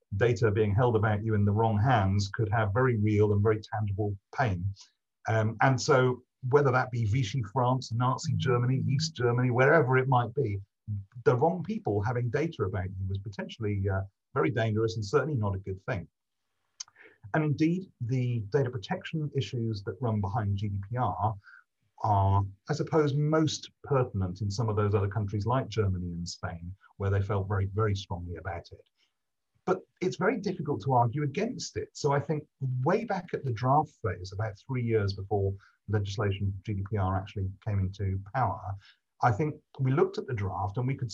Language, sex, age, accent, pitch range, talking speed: English, male, 40-59, British, 105-130 Hz, 175 wpm